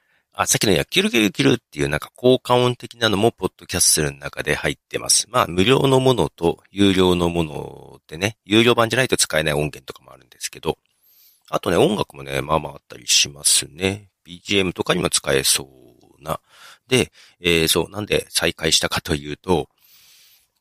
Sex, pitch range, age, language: male, 80-130 Hz, 40-59, Japanese